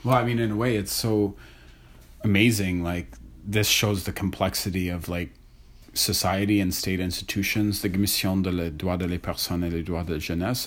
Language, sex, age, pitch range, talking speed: English, male, 30-49, 85-105 Hz, 190 wpm